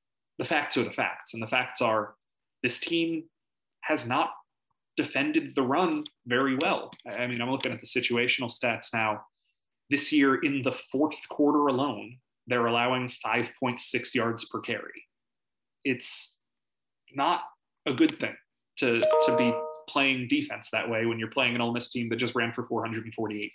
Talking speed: 165 wpm